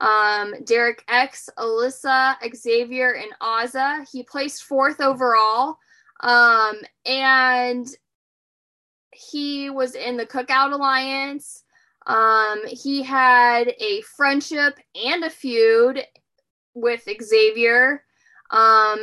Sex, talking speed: female, 95 wpm